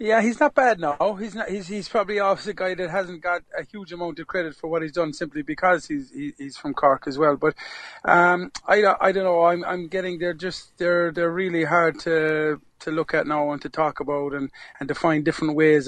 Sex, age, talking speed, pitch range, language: male, 30-49, 240 wpm, 150-185 Hz, English